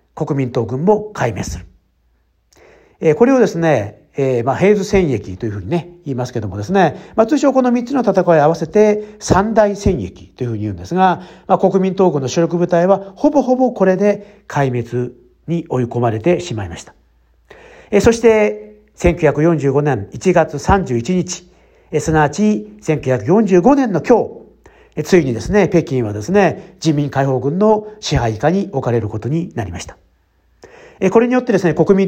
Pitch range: 130-205 Hz